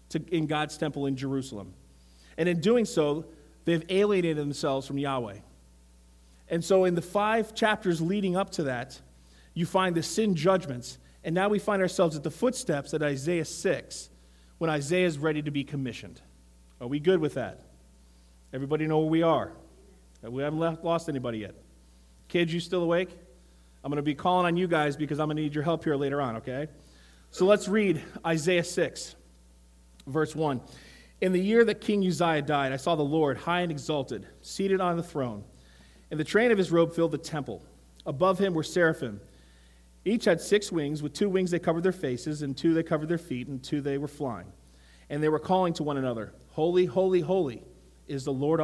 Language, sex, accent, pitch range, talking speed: English, male, American, 115-170 Hz, 195 wpm